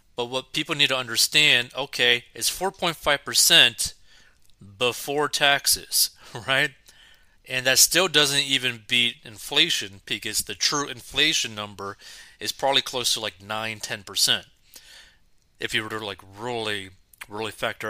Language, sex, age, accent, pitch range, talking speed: English, male, 30-49, American, 105-130 Hz, 145 wpm